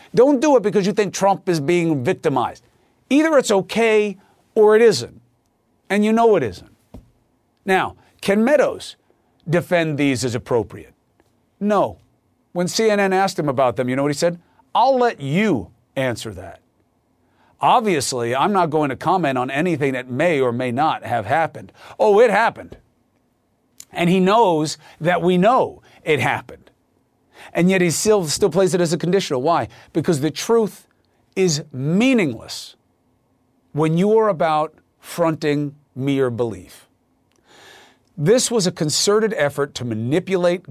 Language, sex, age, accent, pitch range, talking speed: English, male, 50-69, American, 130-190 Hz, 150 wpm